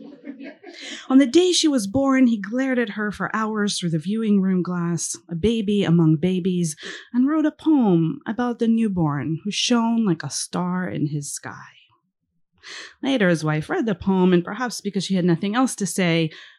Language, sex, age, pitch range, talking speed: English, female, 30-49, 165-220 Hz, 185 wpm